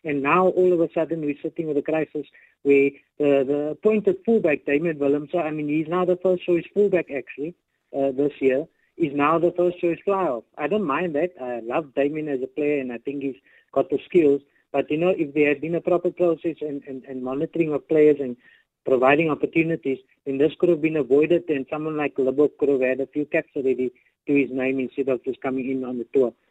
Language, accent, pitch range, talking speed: English, Indian, 135-165 Hz, 225 wpm